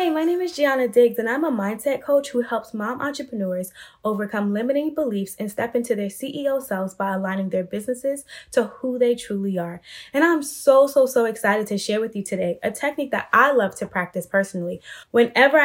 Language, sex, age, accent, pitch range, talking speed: English, female, 10-29, American, 190-255 Hz, 205 wpm